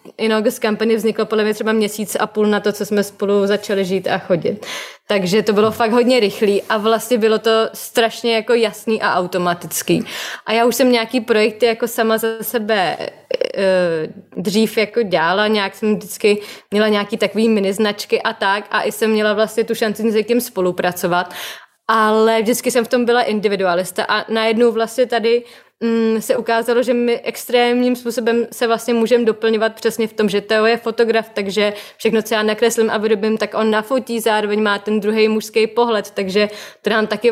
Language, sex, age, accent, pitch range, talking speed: Czech, female, 20-39, native, 210-235 Hz, 185 wpm